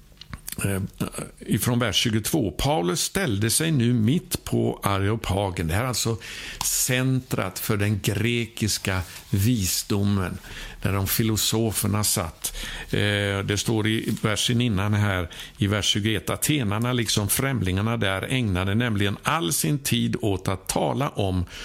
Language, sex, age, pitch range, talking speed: Swedish, male, 60-79, 100-125 Hz, 120 wpm